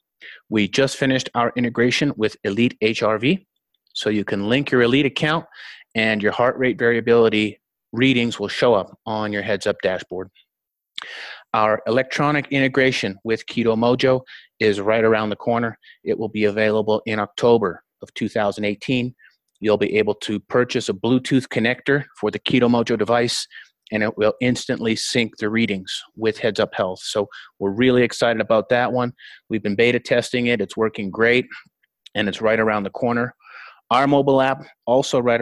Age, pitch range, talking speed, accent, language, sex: 30-49, 110-125 Hz, 165 wpm, American, English, male